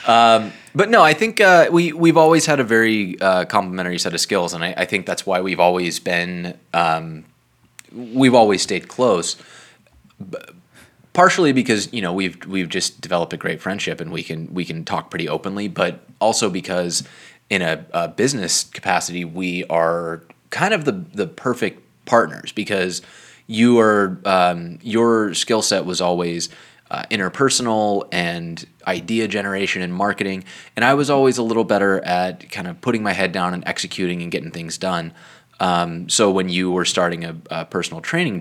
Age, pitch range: 20-39, 85-105 Hz